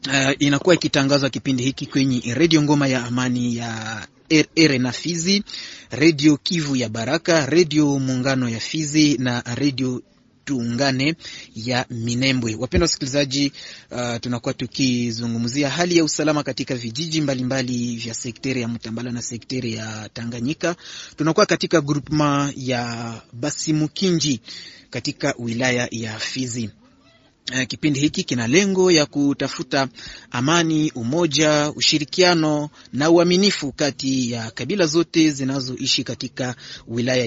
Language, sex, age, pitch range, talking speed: French, male, 30-49, 125-150 Hz, 120 wpm